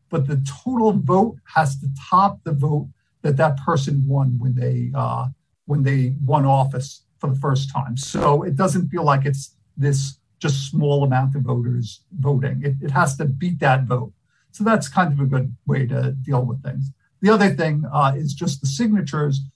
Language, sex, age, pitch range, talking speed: English, male, 50-69, 135-155 Hz, 195 wpm